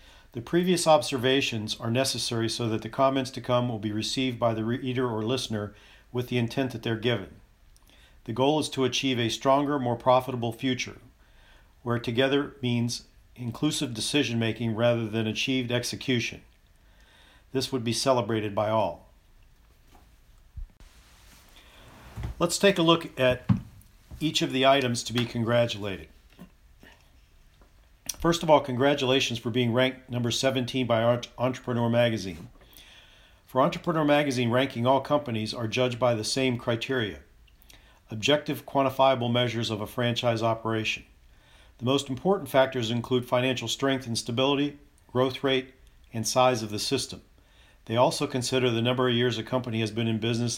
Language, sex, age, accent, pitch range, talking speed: English, male, 50-69, American, 110-130 Hz, 145 wpm